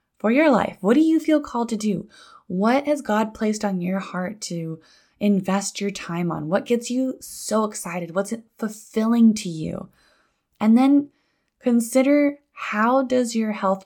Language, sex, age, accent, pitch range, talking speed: English, female, 10-29, American, 185-230 Hz, 170 wpm